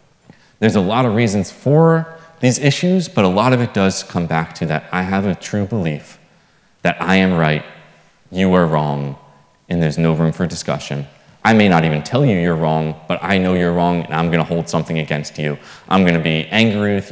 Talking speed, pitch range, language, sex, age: 215 wpm, 80-110 Hz, English, male, 20-39